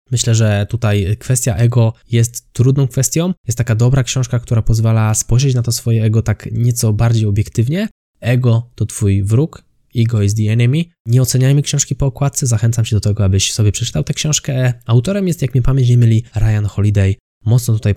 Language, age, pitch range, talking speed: Polish, 20-39, 110-130 Hz, 185 wpm